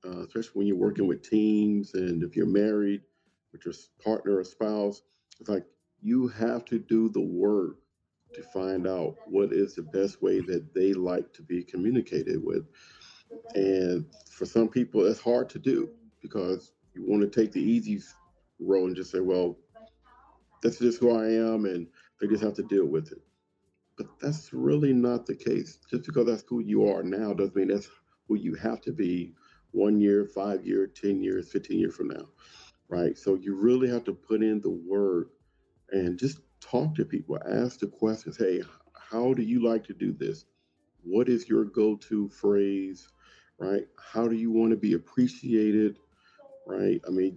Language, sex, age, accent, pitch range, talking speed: English, male, 50-69, American, 100-120 Hz, 180 wpm